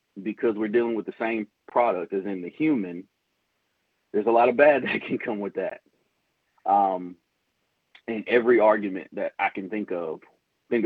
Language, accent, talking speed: English, American, 170 wpm